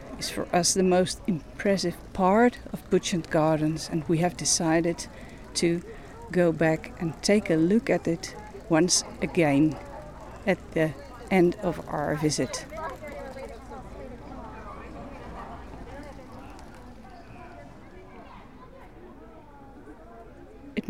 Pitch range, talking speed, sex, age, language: 150-185 Hz, 90 wpm, female, 50-69, Dutch